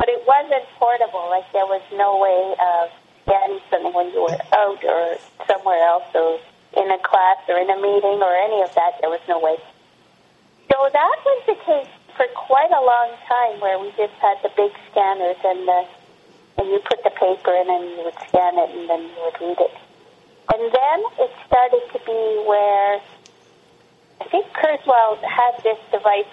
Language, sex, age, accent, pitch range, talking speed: English, female, 40-59, American, 185-245 Hz, 190 wpm